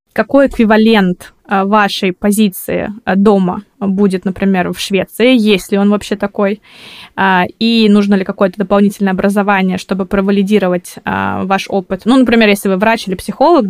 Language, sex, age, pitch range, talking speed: Russian, female, 20-39, 195-220 Hz, 130 wpm